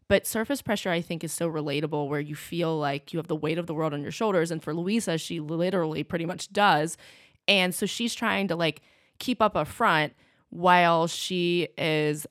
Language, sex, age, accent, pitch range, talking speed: English, female, 20-39, American, 160-190 Hz, 210 wpm